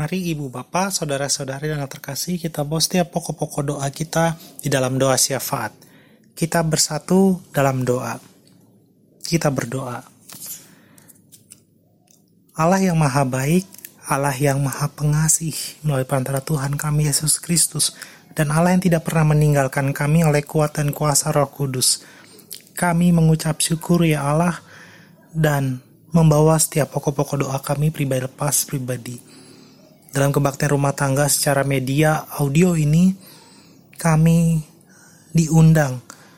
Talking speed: 120 wpm